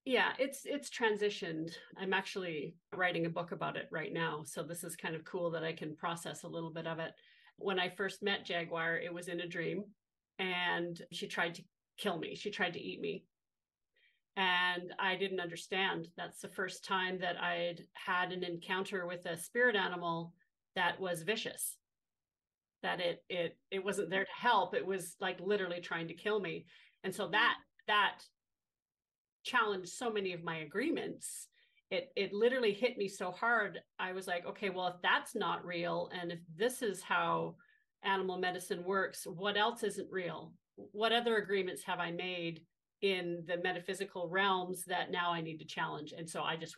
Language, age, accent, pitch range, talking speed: English, 40-59, American, 170-200 Hz, 185 wpm